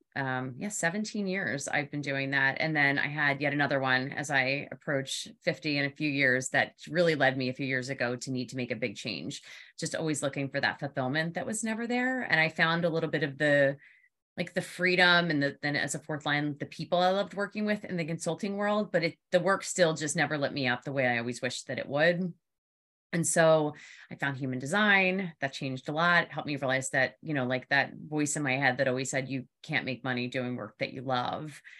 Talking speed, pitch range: 240 wpm, 140-175 Hz